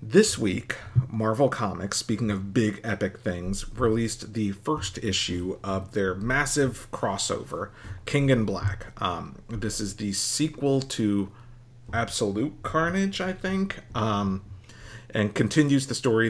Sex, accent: male, American